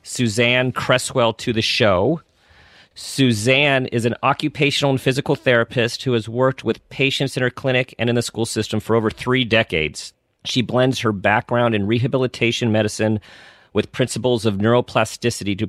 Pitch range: 100-120 Hz